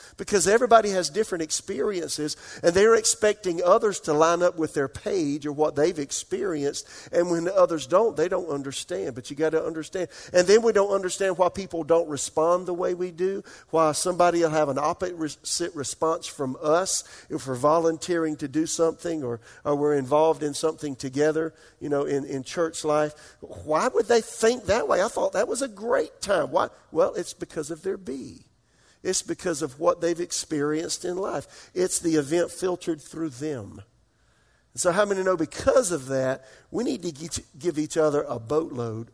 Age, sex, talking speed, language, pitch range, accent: 50-69, male, 185 wpm, English, 145-180 Hz, American